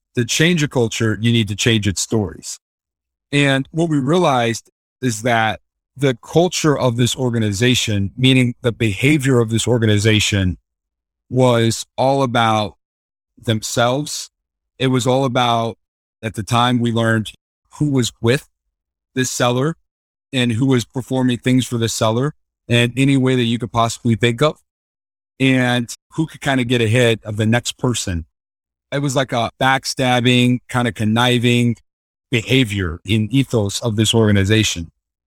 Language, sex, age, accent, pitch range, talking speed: English, male, 40-59, American, 110-130 Hz, 150 wpm